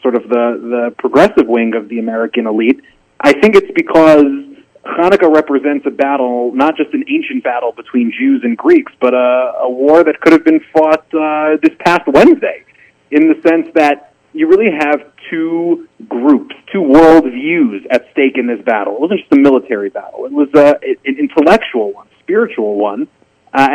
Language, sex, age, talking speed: English, male, 30-49, 185 wpm